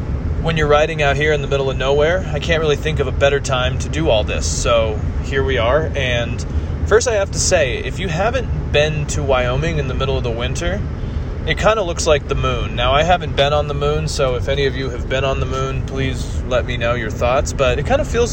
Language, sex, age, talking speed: English, male, 20-39, 260 wpm